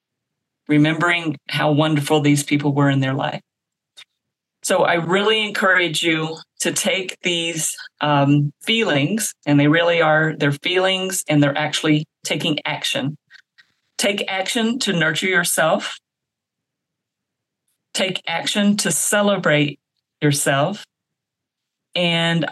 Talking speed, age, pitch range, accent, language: 110 wpm, 40-59, 150-180 Hz, American, English